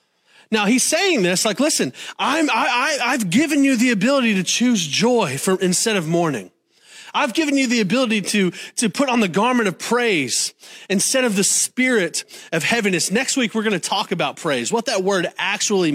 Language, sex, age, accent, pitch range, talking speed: English, male, 30-49, American, 180-250 Hz, 195 wpm